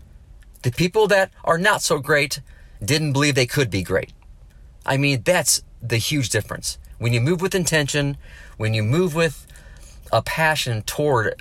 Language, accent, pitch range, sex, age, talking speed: English, American, 110-150 Hz, male, 40-59, 165 wpm